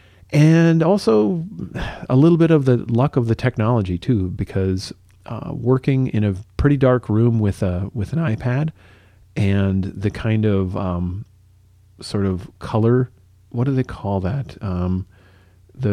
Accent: American